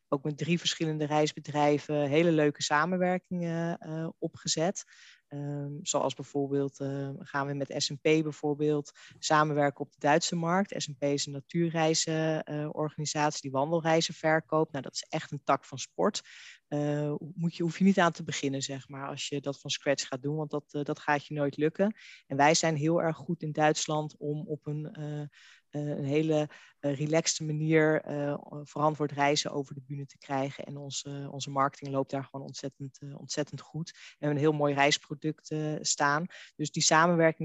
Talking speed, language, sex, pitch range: 185 wpm, Dutch, female, 145-160 Hz